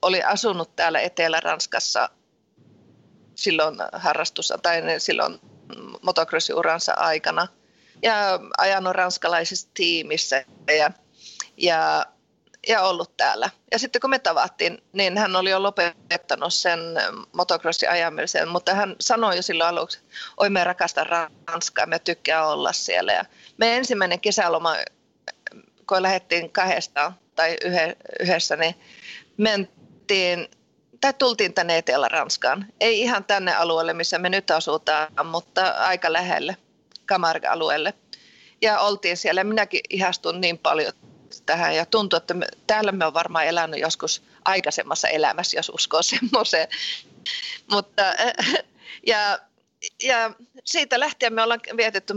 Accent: native